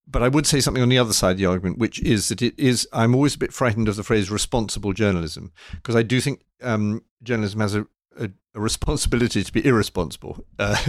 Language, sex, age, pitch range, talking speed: English, male, 50-69, 100-120 Hz, 220 wpm